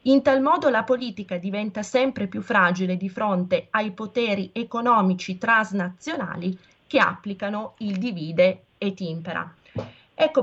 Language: Italian